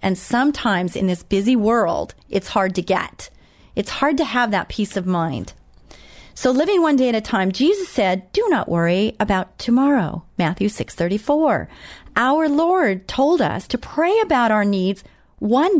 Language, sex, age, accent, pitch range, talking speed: English, female, 40-59, American, 180-235 Hz, 165 wpm